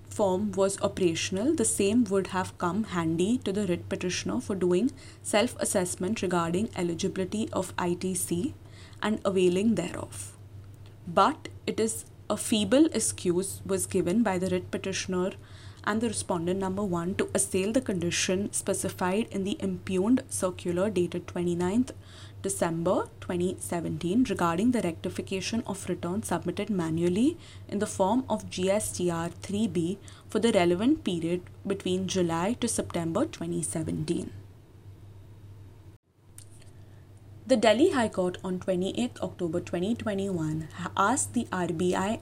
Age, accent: 20-39, Indian